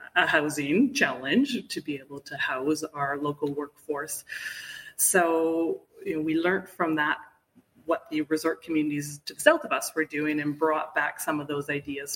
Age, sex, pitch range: 30-49, female, 155-205 Hz